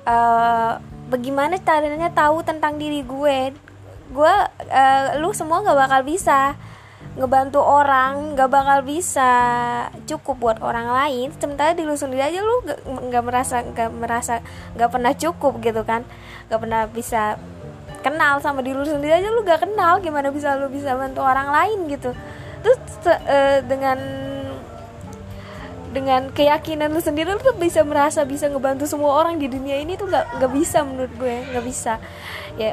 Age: 20-39